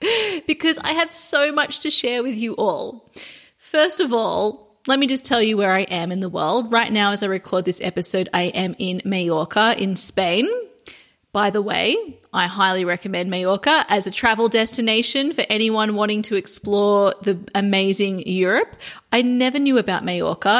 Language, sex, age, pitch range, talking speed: English, female, 30-49, 195-260 Hz, 180 wpm